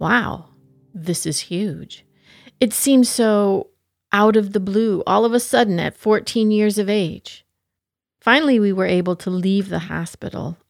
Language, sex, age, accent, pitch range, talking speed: English, female, 40-59, American, 165-210 Hz, 155 wpm